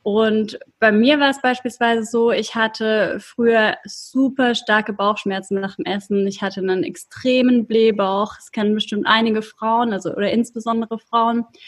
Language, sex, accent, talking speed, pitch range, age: German, female, German, 155 wpm, 205-240 Hz, 20-39